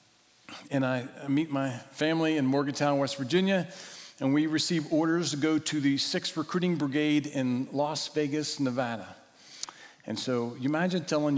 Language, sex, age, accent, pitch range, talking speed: English, male, 40-59, American, 125-155 Hz, 155 wpm